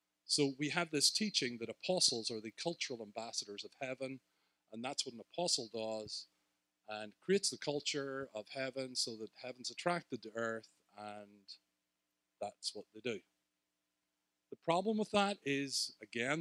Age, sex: 40-59, male